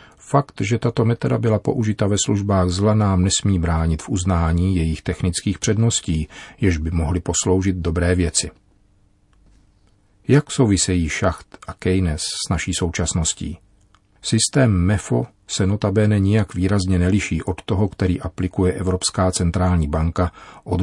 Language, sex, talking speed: Czech, male, 135 wpm